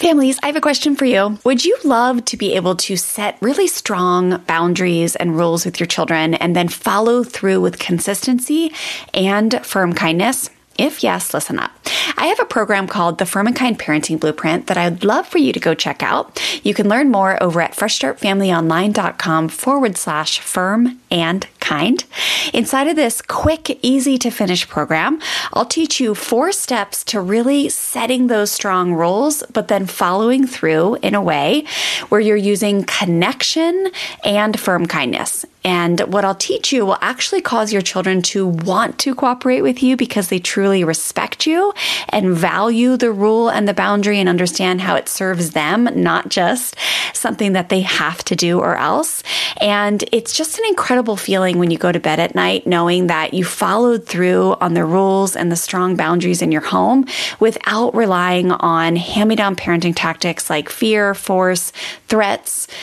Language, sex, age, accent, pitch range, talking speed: English, female, 30-49, American, 180-240 Hz, 175 wpm